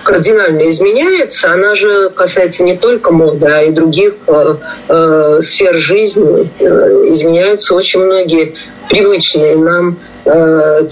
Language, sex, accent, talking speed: Russian, female, native, 120 wpm